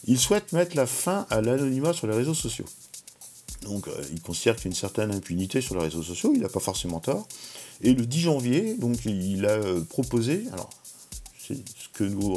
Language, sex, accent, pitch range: French, male, French, 90-130 Hz